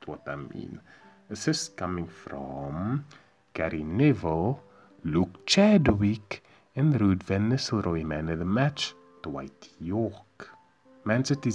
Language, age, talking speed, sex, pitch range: English, 30-49, 115 wpm, male, 85-130 Hz